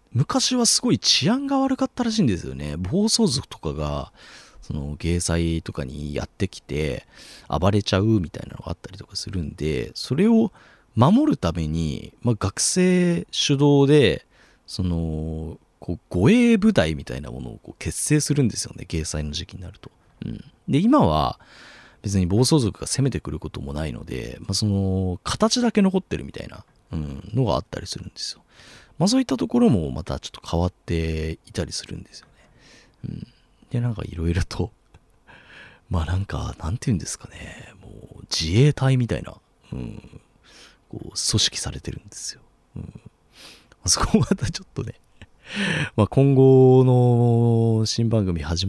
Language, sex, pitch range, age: Japanese, male, 80-130 Hz, 30-49